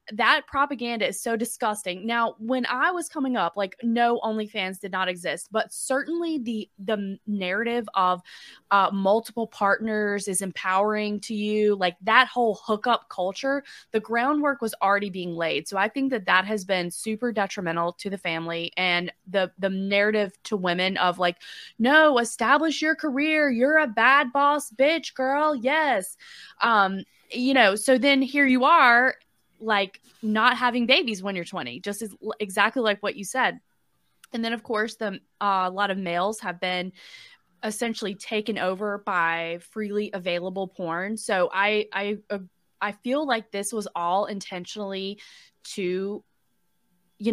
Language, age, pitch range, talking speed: English, 20-39, 190-240 Hz, 160 wpm